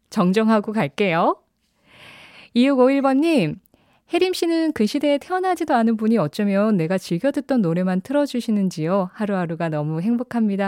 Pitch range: 180-250 Hz